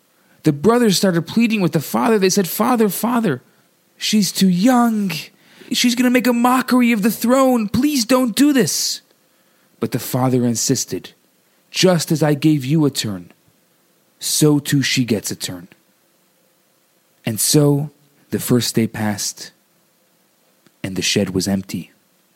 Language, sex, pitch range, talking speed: English, male, 110-175 Hz, 150 wpm